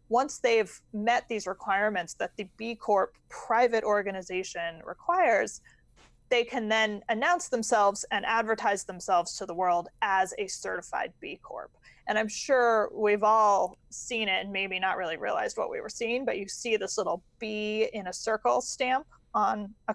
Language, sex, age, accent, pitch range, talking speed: English, female, 20-39, American, 195-250 Hz, 170 wpm